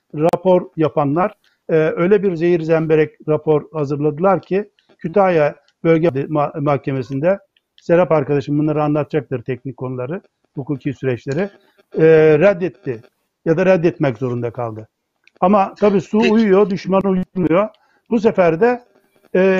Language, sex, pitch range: Turkish, male, 160-215 Hz